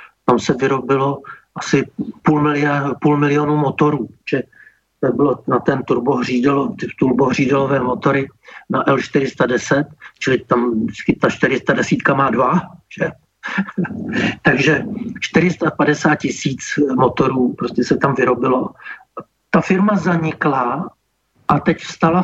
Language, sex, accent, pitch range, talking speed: Czech, male, native, 135-160 Hz, 105 wpm